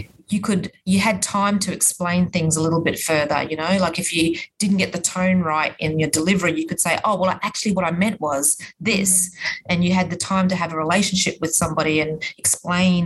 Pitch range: 160-185 Hz